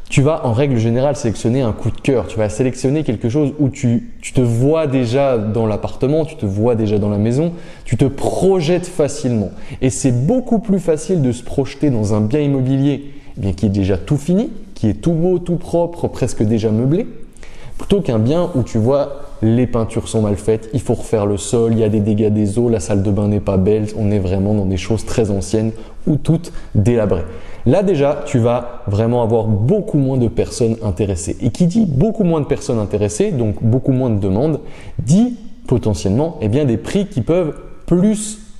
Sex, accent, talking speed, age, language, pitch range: male, French, 205 wpm, 20-39, French, 115-170 Hz